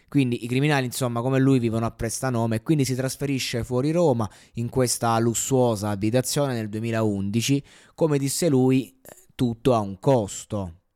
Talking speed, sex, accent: 155 wpm, male, native